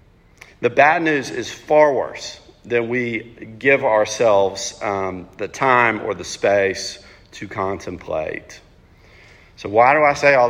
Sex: male